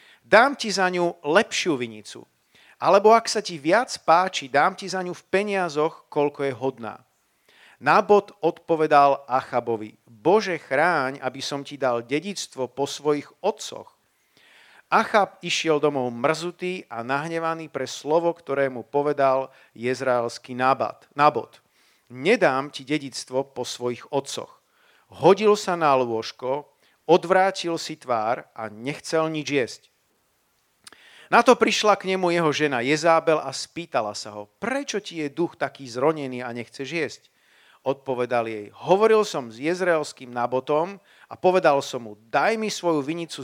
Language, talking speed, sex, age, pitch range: Slovak, 140 wpm, male, 50-69, 130-170 Hz